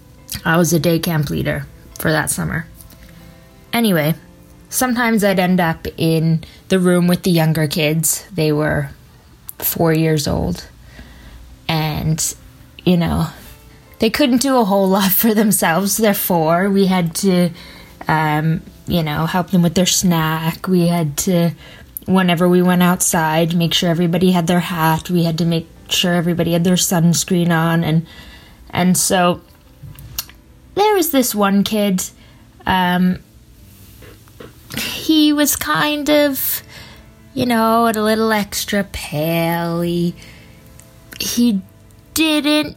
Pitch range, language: 160-200 Hz, English